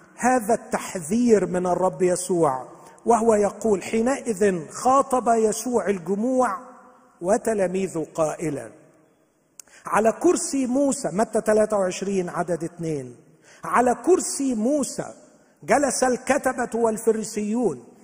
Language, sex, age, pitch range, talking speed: Arabic, male, 50-69, 185-280 Hz, 85 wpm